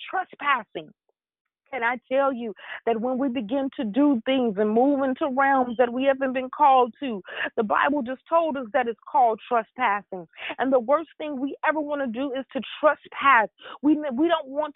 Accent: American